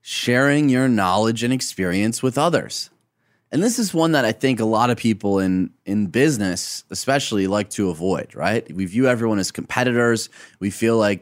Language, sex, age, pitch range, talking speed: English, male, 30-49, 105-130 Hz, 180 wpm